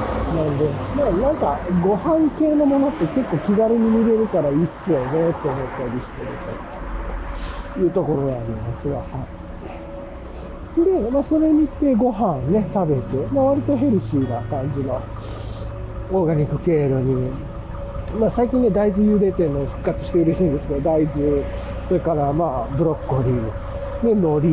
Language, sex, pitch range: Japanese, male, 135-220 Hz